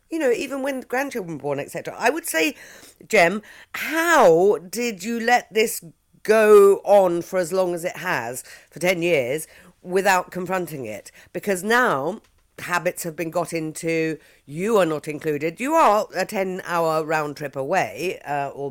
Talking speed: 165 wpm